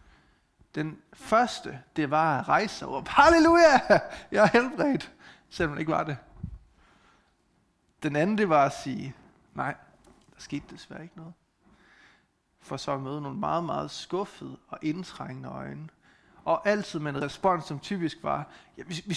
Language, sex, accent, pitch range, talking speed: Danish, male, native, 150-200 Hz, 150 wpm